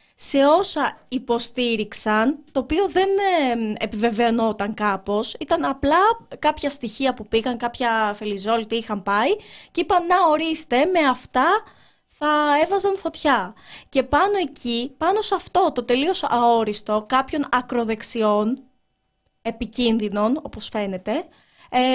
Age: 20-39